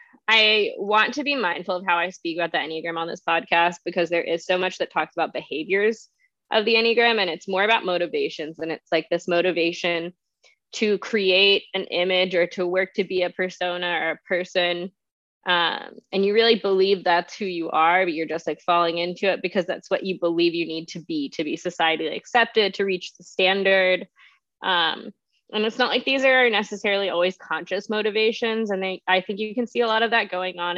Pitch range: 175-215 Hz